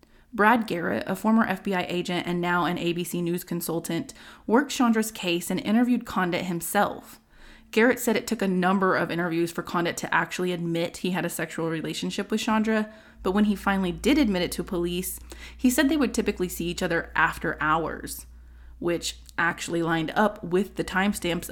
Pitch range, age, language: 170-210 Hz, 20-39, English